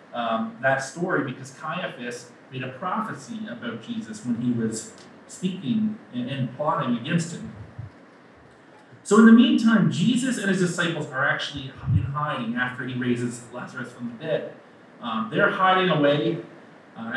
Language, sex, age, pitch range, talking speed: English, male, 30-49, 125-180 Hz, 145 wpm